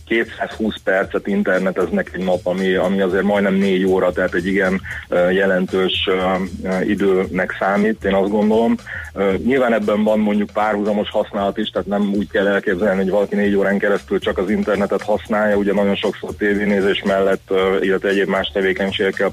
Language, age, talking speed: Hungarian, 30-49, 155 wpm